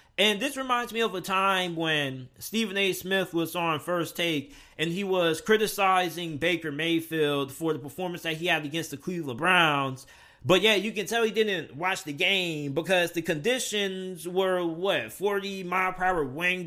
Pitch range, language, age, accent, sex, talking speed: 155-195 Hz, English, 30-49, American, male, 185 wpm